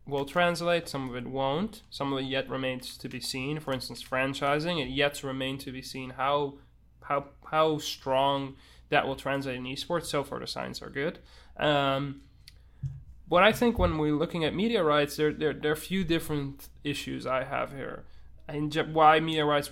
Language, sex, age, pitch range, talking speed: English, male, 20-39, 135-155 Hz, 190 wpm